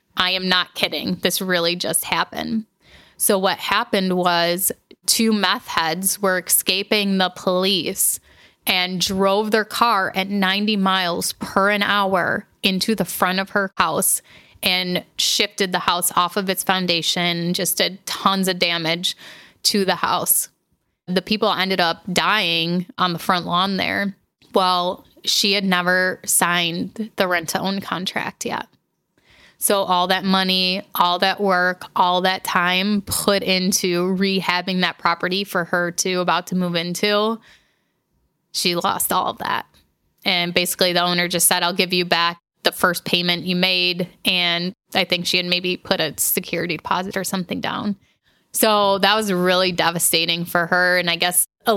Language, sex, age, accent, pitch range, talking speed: English, female, 20-39, American, 180-195 Hz, 160 wpm